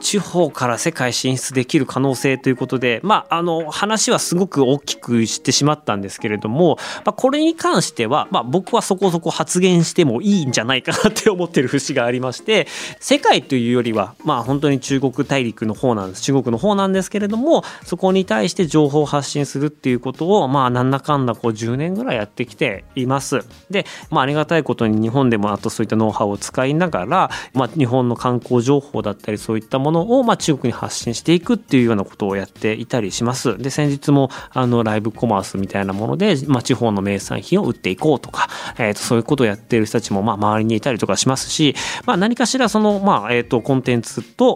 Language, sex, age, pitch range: Japanese, male, 20-39, 115-175 Hz